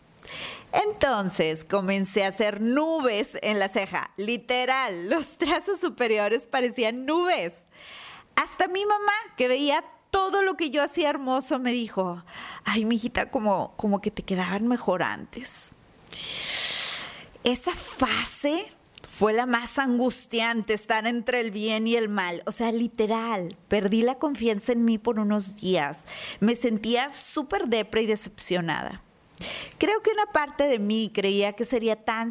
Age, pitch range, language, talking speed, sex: 30-49, 205-280 Hz, Spanish, 140 wpm, female